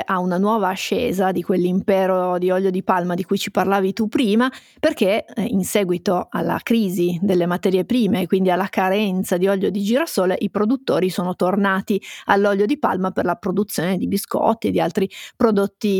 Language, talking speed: Italian, 180 wpm